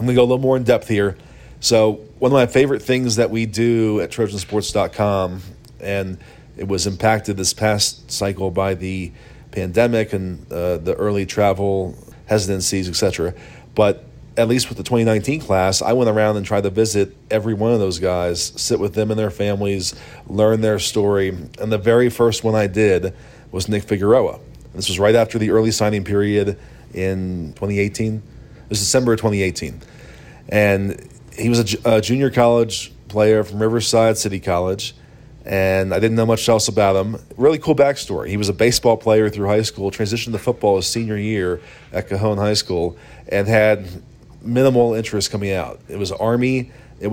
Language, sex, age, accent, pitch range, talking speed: English, male, 40-59, American, 100-115 Hz, 180 wpm